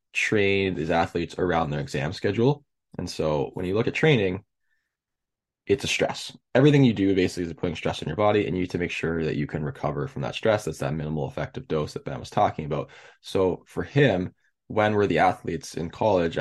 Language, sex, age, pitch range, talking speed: English, male, 20-39, 85-110 Hz, 215 wpm